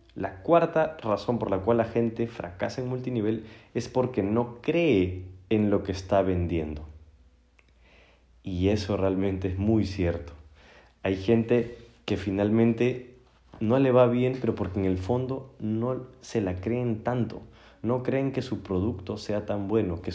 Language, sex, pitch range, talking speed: Spanish, male, 95-120 Hz, 160 wpm